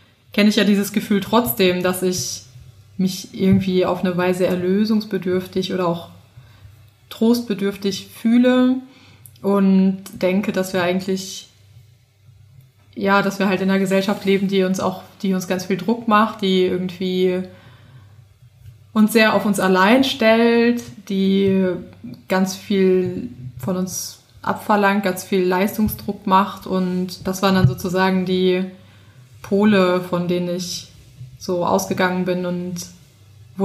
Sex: female